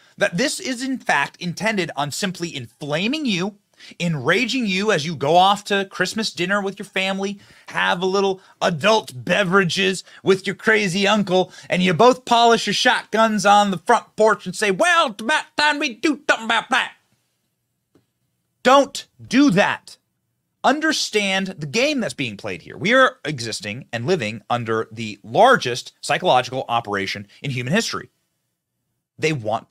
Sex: male